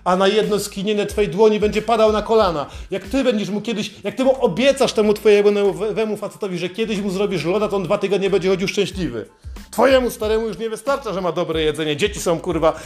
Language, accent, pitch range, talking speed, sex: Polish, native, 175-210 Hz, 215 wpm, male